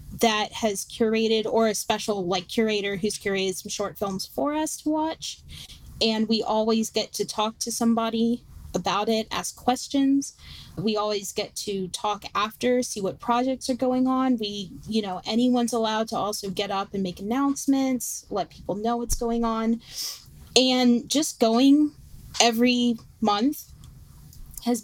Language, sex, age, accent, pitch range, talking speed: English, female, 20-39, American, 200-245 Hz, 155 wpm